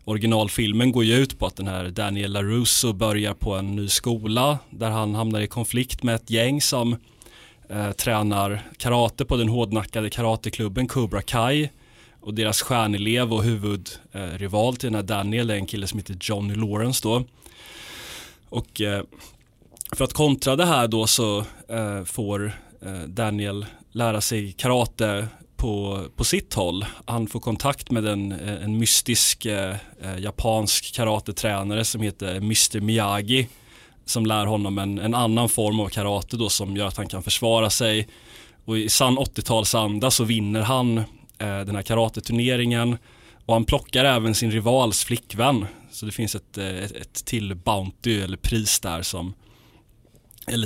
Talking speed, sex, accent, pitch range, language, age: 160 wpm, male, native, 100-120 Hz, Swedish, 30-49